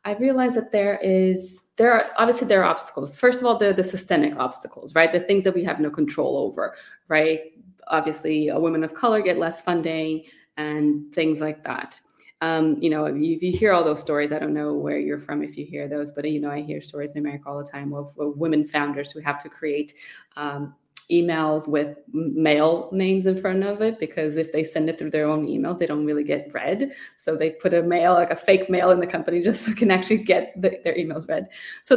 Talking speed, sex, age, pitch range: 225 wpm, female, 20-39, 155-190 Hz